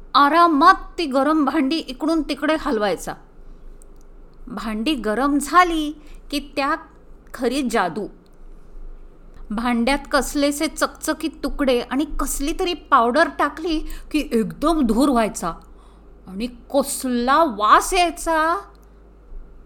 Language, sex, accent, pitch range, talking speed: Marathi, female, native, 230-285 Hz, 85 wpm